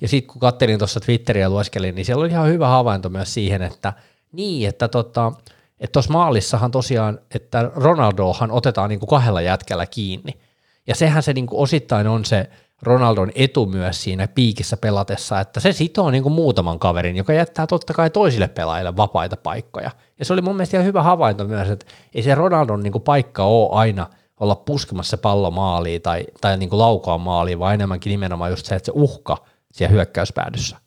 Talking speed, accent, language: 185 wpm, native, Finnish